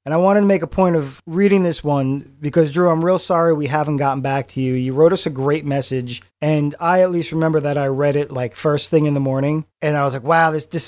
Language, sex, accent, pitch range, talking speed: English, male, American, 130-155 Hz, 275 wpm